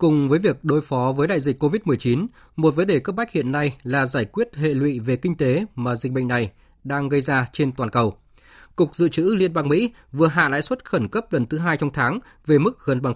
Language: Vietnamese